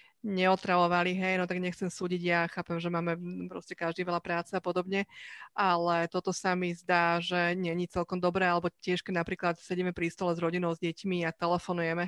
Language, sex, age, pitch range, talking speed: Slovak, female, 30-49, 170-185 Hz, 195 wpm